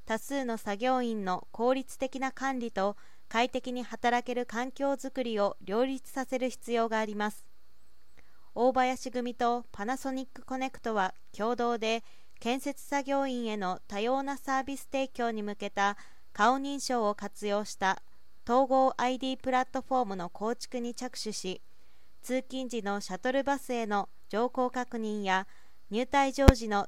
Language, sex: Japanese, female